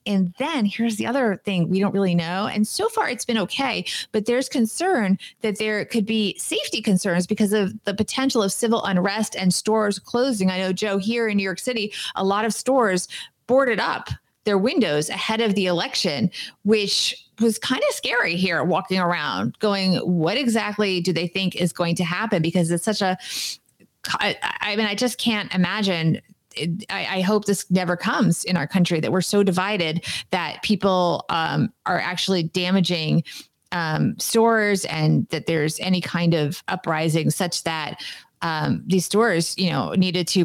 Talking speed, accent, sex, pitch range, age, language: 180 wpm, American, female, 180-220 Hz, 30-49, English